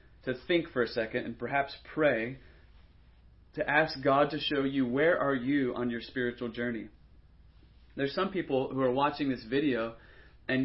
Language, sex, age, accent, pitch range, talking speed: English, male, 30-49, American, 115-140 Hz, 170 wpm